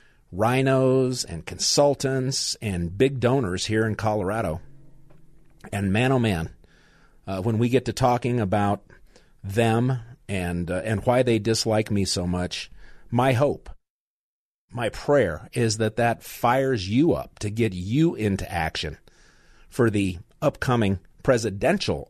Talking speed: 135 wpm